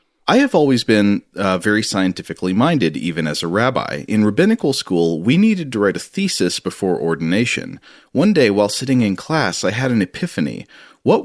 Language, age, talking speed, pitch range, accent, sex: English, 40-59, 180 wpm, 90-135 Hz, American, male